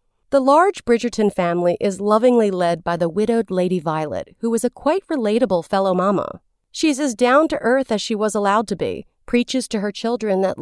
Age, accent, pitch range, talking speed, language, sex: 40-59, American, 195-265 Hz, 185 wpm, English, female